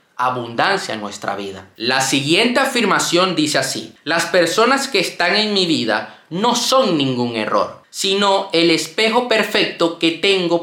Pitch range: 145-205 Hz